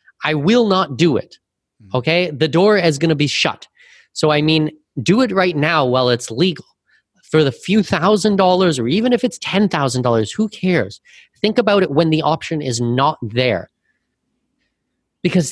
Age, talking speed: 30-49, 170 wpm